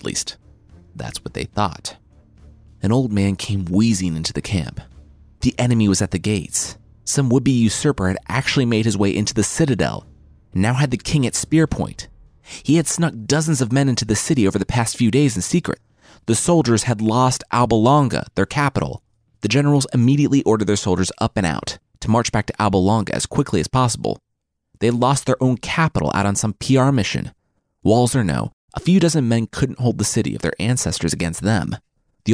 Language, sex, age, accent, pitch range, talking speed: English, male, 30-49, American, 95-130 Hz, 200 wpm